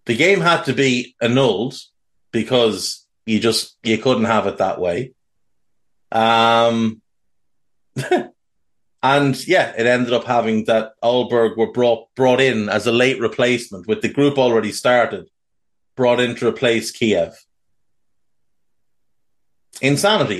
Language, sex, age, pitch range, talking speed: English, male, 30-49, 110-130 Hz, 125 wpm